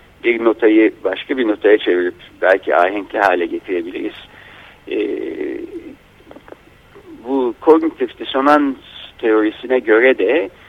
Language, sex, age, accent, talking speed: Turkish, male, 60-79, native, 95 wpm